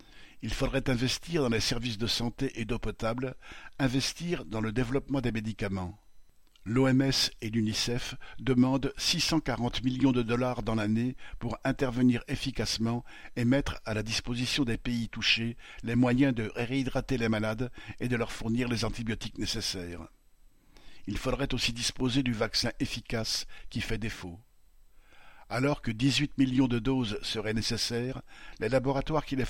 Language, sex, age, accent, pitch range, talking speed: French, male, 60-79, French, 115-135 Hz, 150 wpm